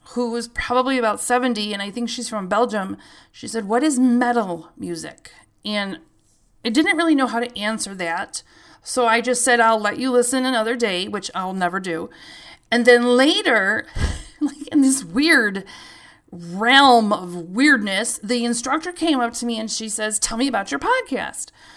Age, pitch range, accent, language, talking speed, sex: 40-59, 215-275 Hz, American, English, 175 wpm, female